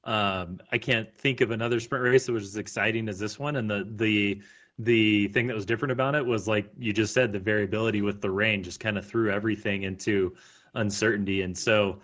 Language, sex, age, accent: English, male, 30-49, American